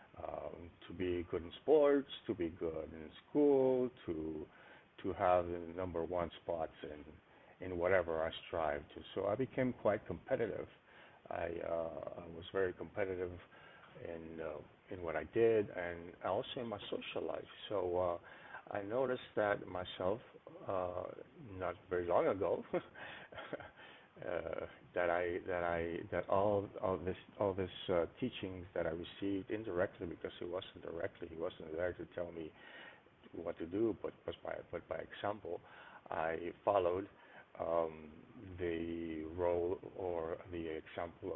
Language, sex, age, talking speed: English, male, 50-69, 150 wpm